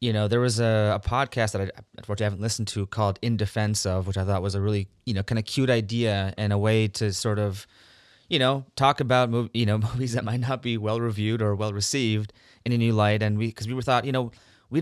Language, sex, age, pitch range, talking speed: English, male, 20-39, 100-115 Hz, 265 wpm